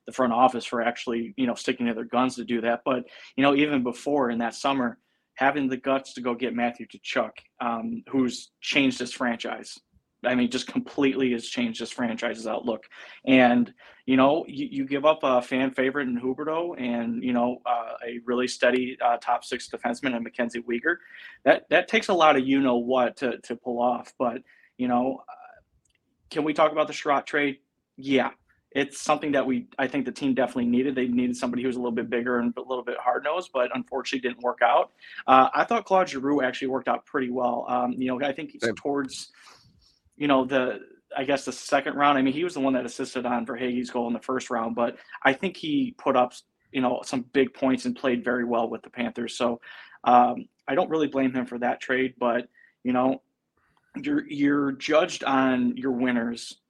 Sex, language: male, English